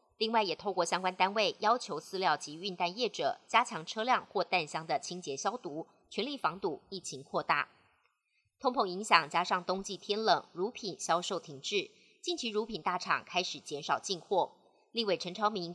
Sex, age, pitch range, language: male, 30-49, 165-210 Hz, Chinese